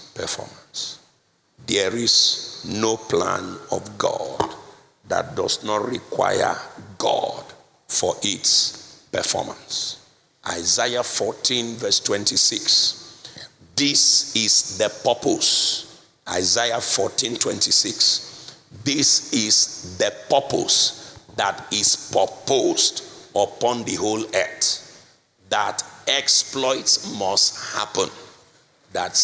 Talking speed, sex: 85 wpm, male